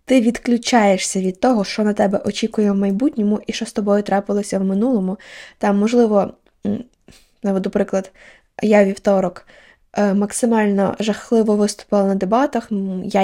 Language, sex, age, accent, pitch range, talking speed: Ukrainian, female, 20-39, native, 200-255 Hz, 130 wpm